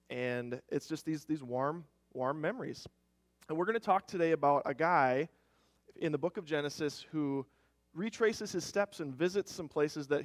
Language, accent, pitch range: English, American, 130-175 Hz